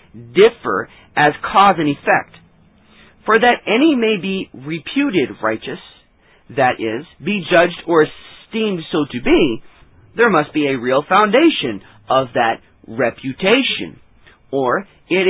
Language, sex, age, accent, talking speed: English, male, 40-59, American, 125 wpm